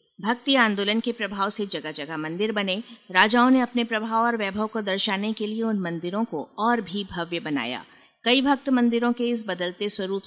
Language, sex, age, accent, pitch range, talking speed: Hindi, female, 50-69, native, 175-240 Hz, 195 wpm